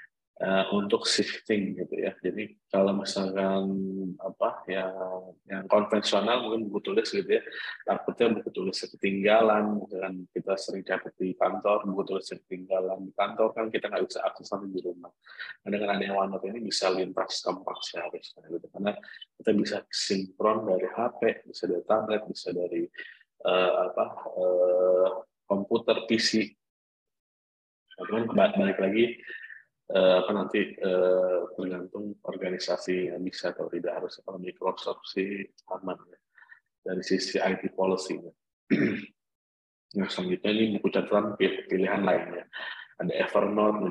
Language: Indonesian